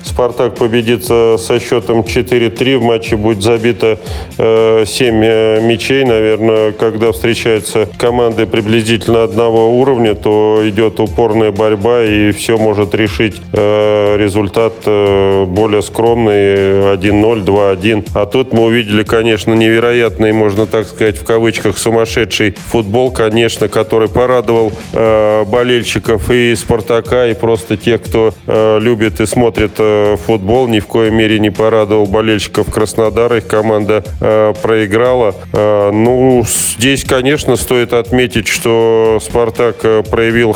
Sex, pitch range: male, 105-115 Hz